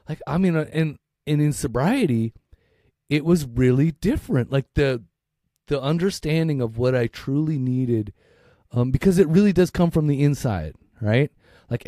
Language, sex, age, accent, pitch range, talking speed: English, male, 30-49, American, 115-155 Hz, 155 wpm